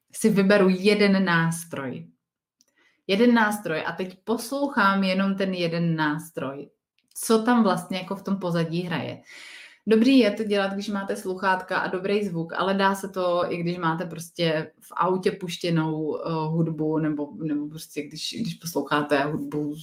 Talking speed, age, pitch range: 150 wpm, 30-49, 165-200 Hz